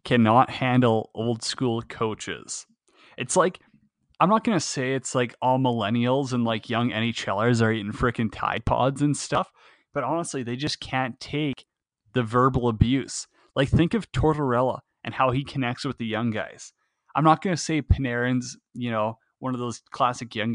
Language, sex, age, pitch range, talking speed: English, male, 20-39, 115-140 Hz, 180 wpm